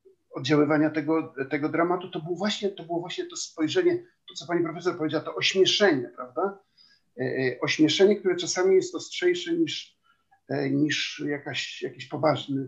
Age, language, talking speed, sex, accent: 50-69, Polish, 155 wpm, male, native